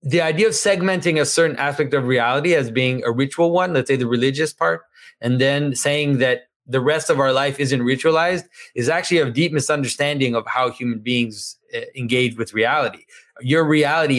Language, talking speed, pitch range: English, 185 wpm, 130-170 Hz